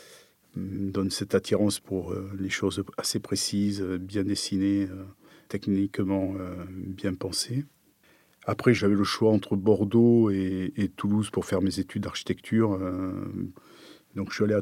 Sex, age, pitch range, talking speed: male, 40-59, 95-105 Hz, 125 wpm